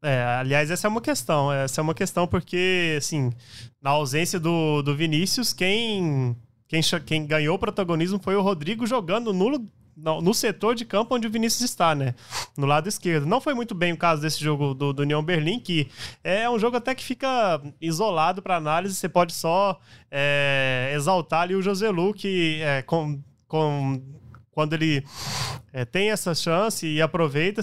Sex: male